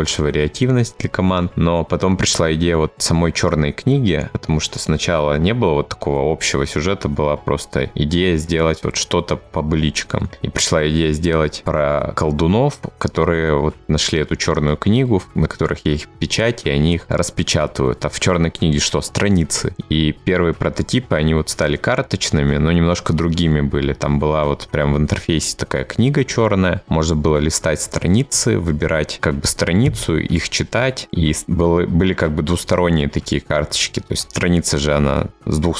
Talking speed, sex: 165 wpm, male